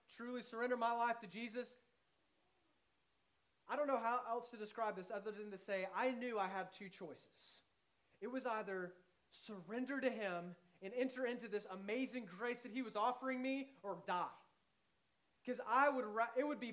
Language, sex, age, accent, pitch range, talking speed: English, male, 30-49, American, 160-235 Hz, 170 wpm